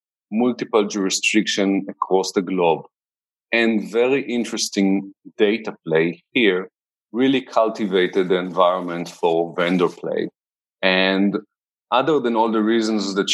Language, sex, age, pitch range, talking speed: English, male, 30-49, 90-110 Hz, 115 wpm